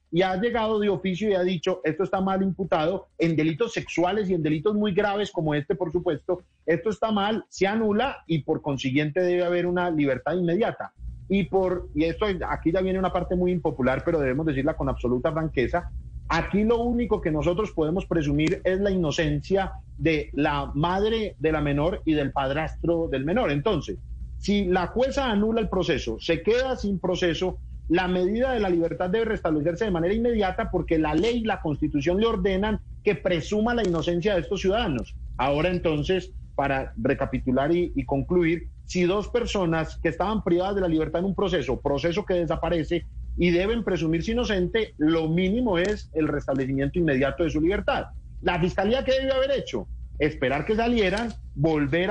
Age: 40-59